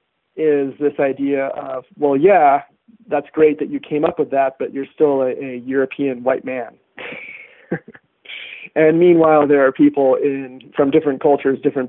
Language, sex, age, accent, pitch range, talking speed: English, male, 40-59, American, 135-160 Hz, 160 wpm